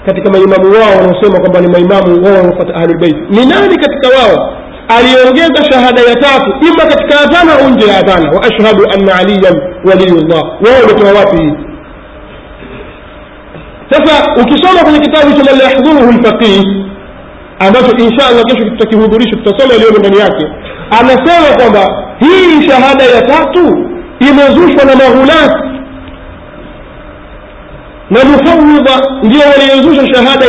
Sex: male